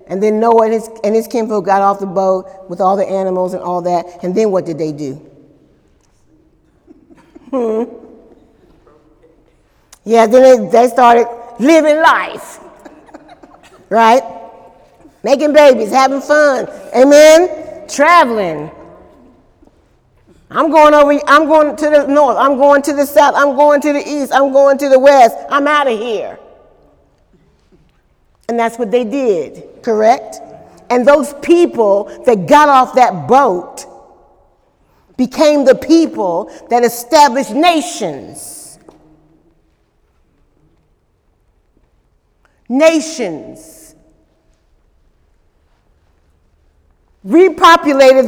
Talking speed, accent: 110 wpm, American